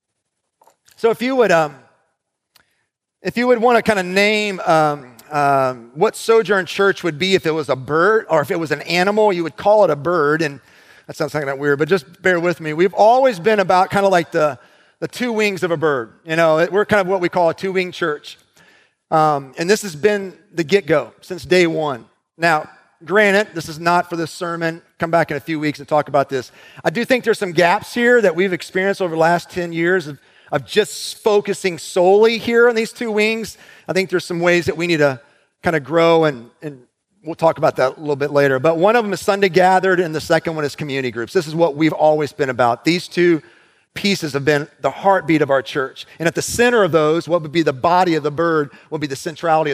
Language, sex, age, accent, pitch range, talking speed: English, male, 40-59, American, 155-200 Hz, 240 wpm